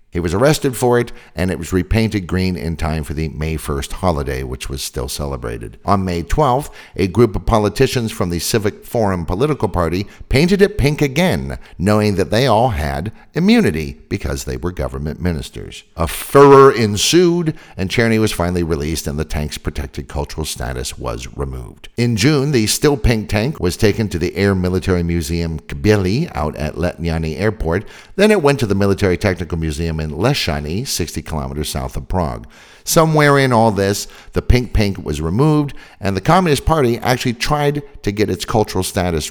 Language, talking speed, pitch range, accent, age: English, 180 wpm, 80-115 Hz, American, 50-69